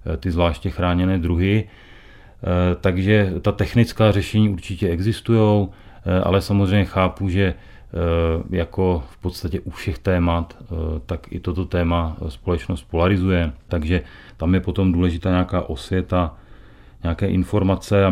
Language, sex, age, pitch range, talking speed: Czech, male, 40-59, 85-95 Hz, 120 wpm